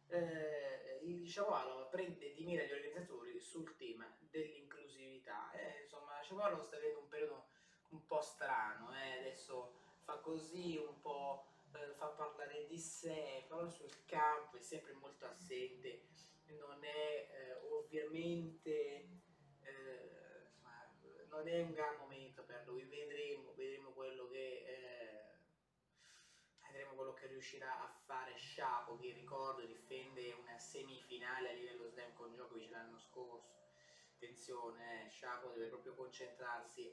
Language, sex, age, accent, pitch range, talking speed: Italian, male, 20-39, native, 130-175 Hz, 130 wpm